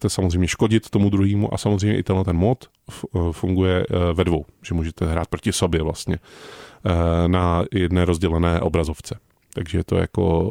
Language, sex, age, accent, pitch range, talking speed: Czech, male, 30-49, native, 90-110 Hz, 160 wpm